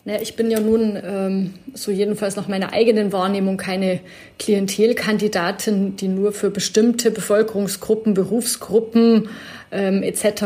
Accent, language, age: German, German, 30-49